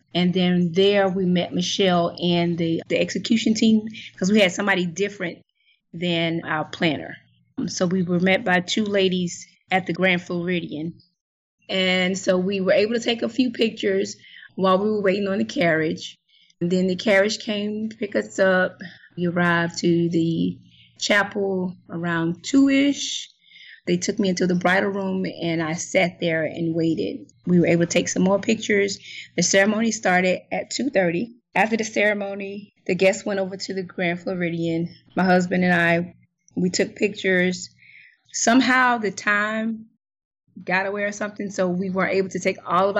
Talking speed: 170 wpm